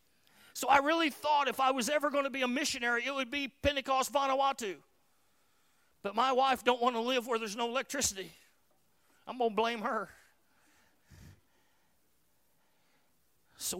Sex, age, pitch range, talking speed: male, 40-59, 200-230 Hz, 150 wpm